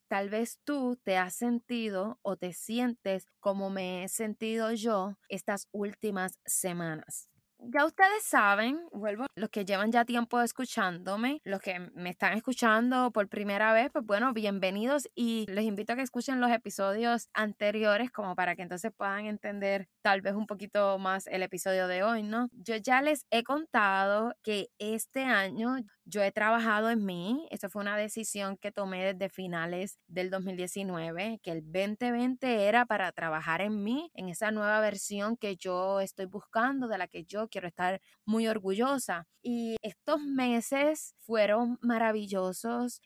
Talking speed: 160 wpm